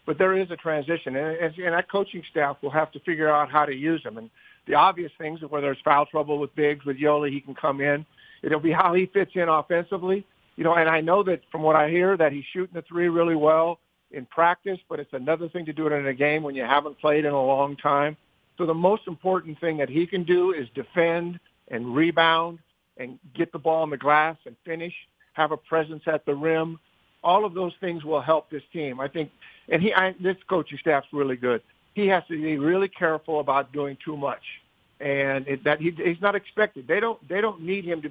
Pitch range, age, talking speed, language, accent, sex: 145-170 Hz, 50-69, 235 wpm, English, American, male